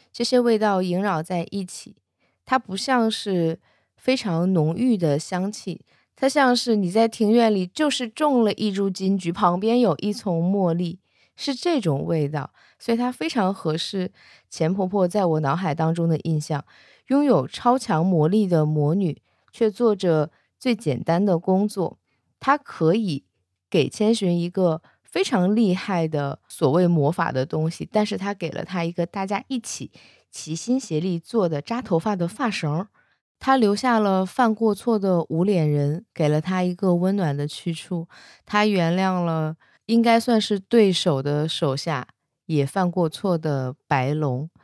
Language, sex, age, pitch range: Chinese, female, 20-39, 155-210 Hz